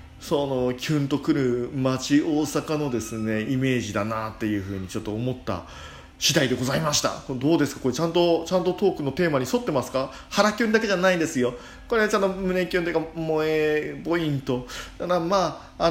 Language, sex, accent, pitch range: Japanese, male, native, 120-185 Hz